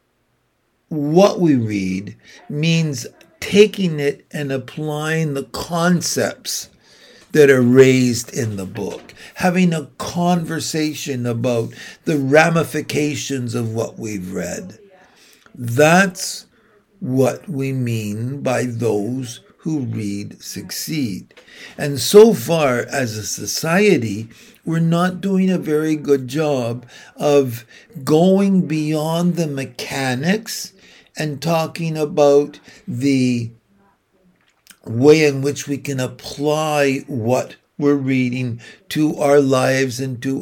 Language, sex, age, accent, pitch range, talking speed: English, male, 60-79, American, 125-170 Hz, 105 wpm